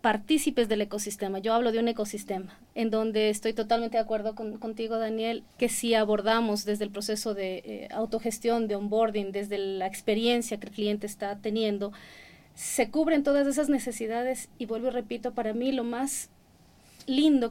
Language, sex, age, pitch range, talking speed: Spanish, female, 30-49, 215-245 Hz, 170 wpm